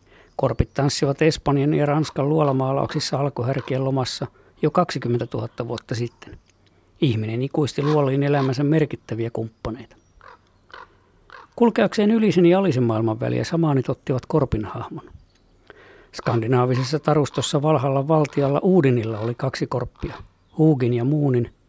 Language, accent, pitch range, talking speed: Finnish, native, 120-150 Hz, 110 wpm